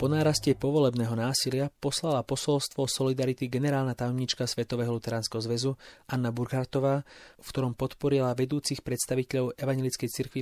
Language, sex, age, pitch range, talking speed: English, male, 30-49, 120-140 Hz, 120 wpm